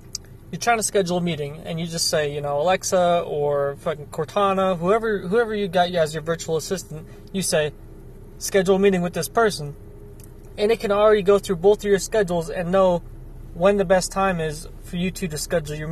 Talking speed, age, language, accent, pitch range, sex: 210 wpm, 20-39, English, American, 145-200 Hz, male